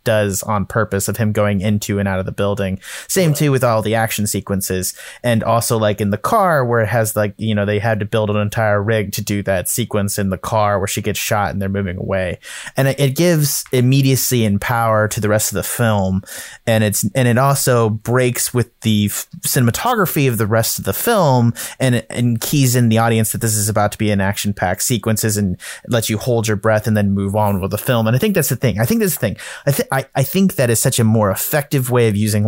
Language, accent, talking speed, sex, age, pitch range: English, American, 245 wpm, male, 30-49, 105-125 Hz